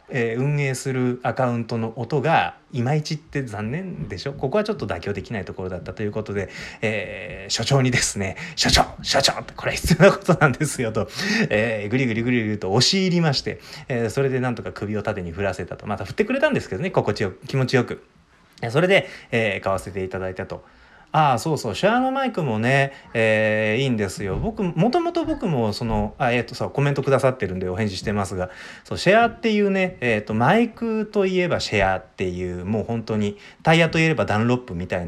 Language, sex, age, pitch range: Japanese, male, 30-49, 100-165 Hz